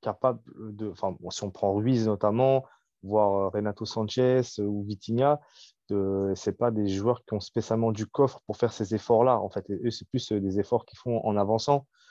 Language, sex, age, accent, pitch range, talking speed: French, male, 20-39, French, 100-115 Hz, 195 wpm